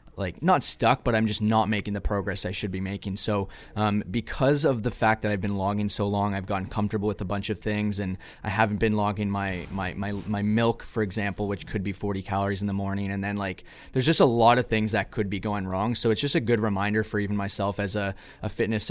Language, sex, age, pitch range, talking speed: English, male, 20-39, 100-110 Hz, 255 wpm